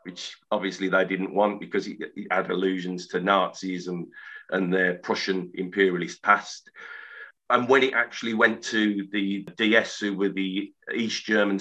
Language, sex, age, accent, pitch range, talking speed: English, male, 40-59, British, 95-105 Hz, 160 wpm